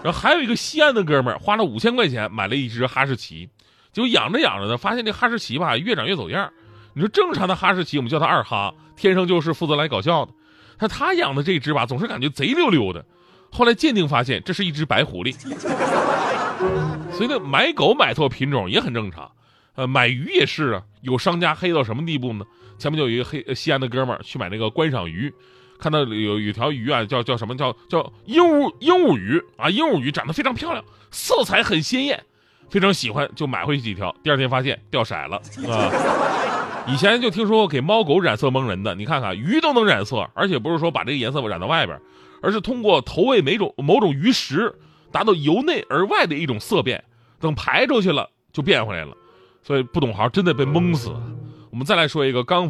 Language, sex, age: Chinese, male, 30-49